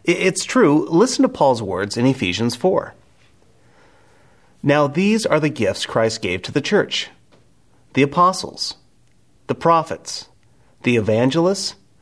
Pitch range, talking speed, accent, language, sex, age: 115-175 Hz, 125 wpm, American, English, male, 30-49